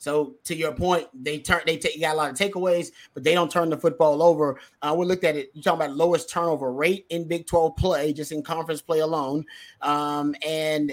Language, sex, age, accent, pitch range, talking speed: English, male, 30-49, American, 155-185 Hz, 235 wpm